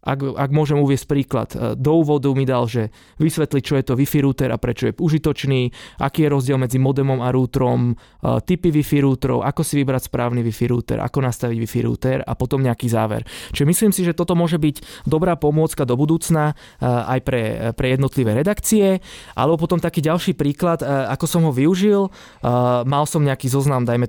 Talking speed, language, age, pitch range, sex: 180 wpm, Slovak, 20-39, 130-155 Hz, male